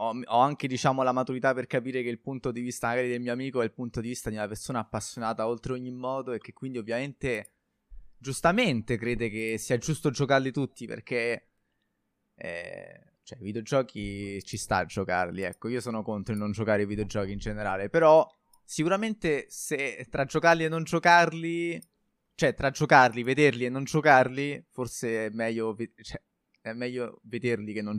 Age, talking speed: 20-39, 180 wpm